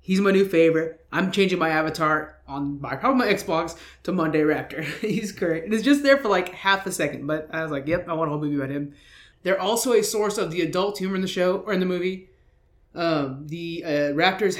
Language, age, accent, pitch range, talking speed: English, 30-49, American, 155-195 Hz, 235 wpm